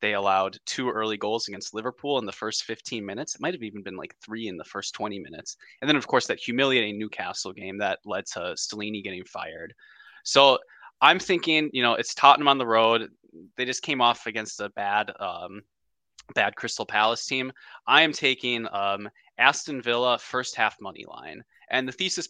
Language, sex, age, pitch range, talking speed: English, male, 20-39, 105-125 Hz, 195 wpm